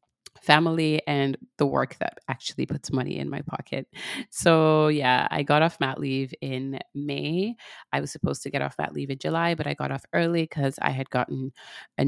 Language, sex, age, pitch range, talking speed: English, female, 30-49, 135-165 Hz, 200 wpm